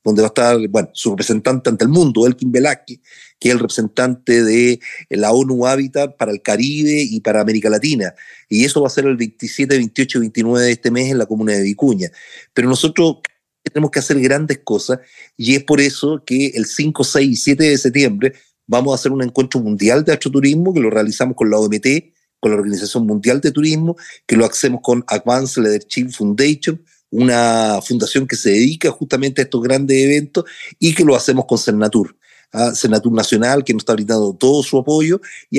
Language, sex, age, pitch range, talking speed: Spanish, male, 40-59, 115-140 Hz, 195 wpm